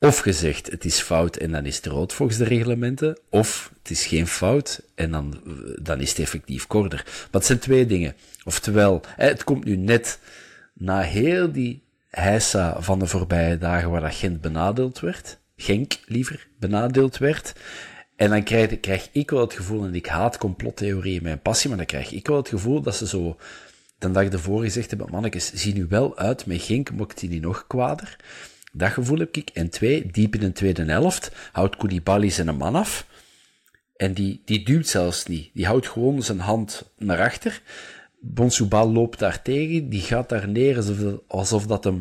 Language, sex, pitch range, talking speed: Dutch, male, 90-125 Hz, 190 wpm